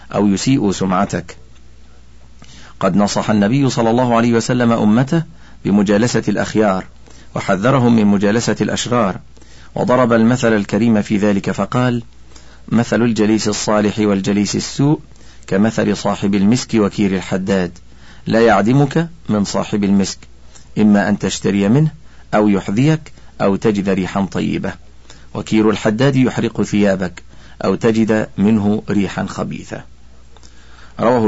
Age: 50-69